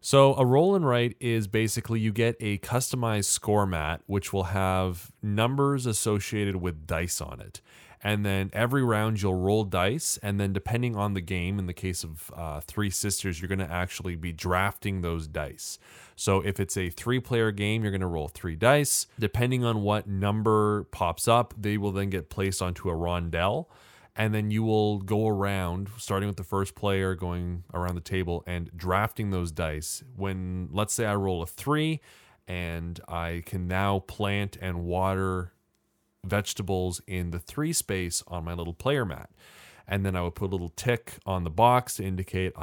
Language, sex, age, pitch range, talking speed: English, male, 20-39, 90-105 Hz, 185 wpm